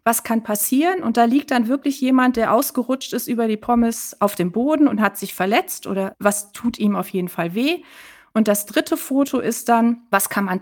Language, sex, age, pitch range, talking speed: German, female, 30-49, 210-265 Hz, 220 wpm